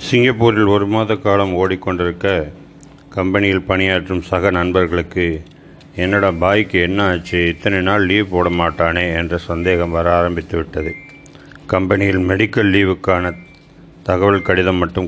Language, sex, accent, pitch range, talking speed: Tamil, male, native, 85-95 Hz, 110 wpm